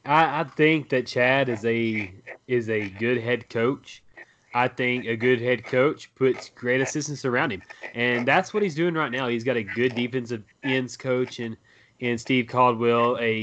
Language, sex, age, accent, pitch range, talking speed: English, male, 20-39, American, 115-130 Hz, 190 wpm